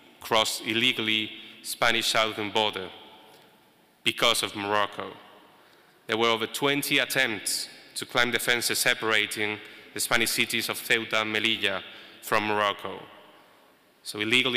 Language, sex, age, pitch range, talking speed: English, male, 30-49, 105-120 Hz, 115 wpm